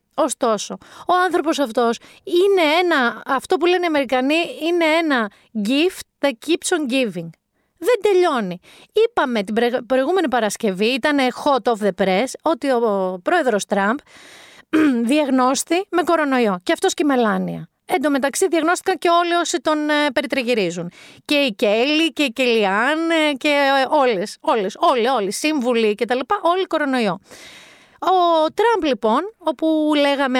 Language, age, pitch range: Greek, 30-49, 225-315 Hz